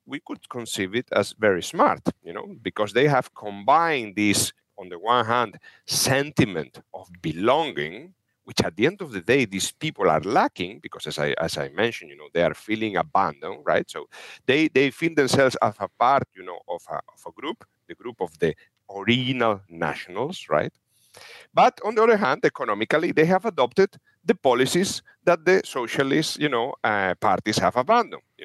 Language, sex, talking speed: English, male, 185 wpm